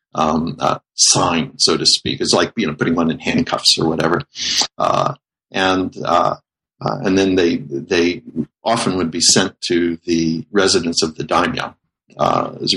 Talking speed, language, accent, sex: 170 wpm, English, American, male